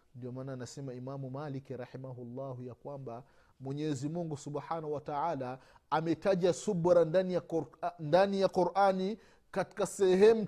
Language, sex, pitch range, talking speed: Swahili, male, 125-185 Hz, 145 wpm